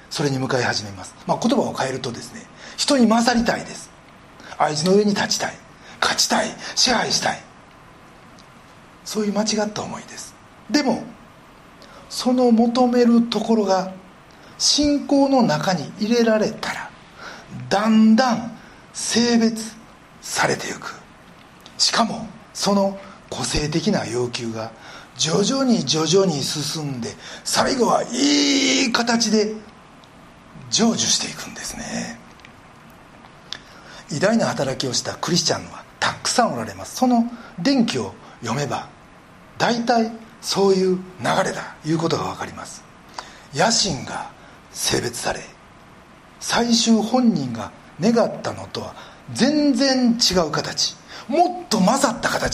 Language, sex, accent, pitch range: Japanese, male, native, 180-240 Hz